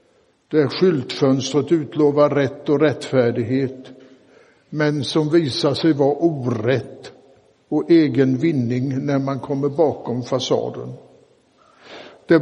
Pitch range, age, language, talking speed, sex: 130-160 Hz, 60-79, Swedish, 100 wpm, male